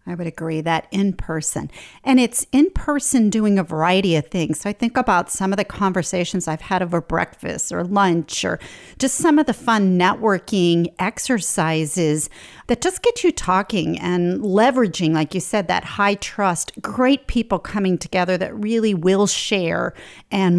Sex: female